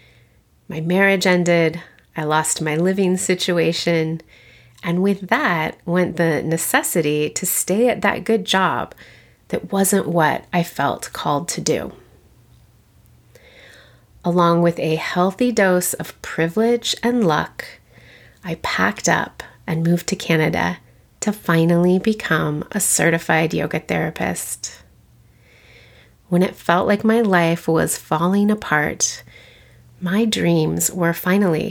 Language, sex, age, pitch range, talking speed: English, female, 30-49, 155-200 Hz, 120 wpm